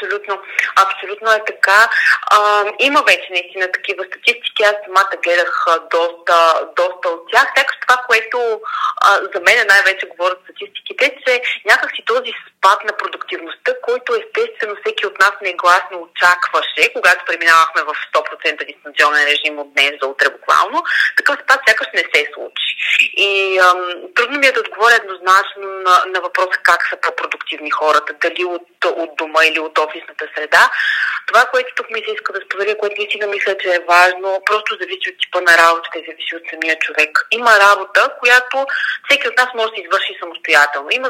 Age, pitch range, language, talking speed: 30-49, 175-250 Hz, Bulgarian, 170 wpm